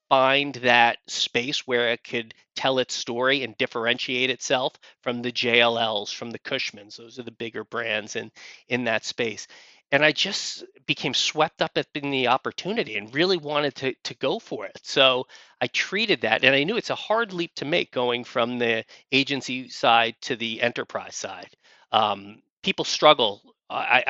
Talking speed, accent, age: 175 wpm, American, 30-49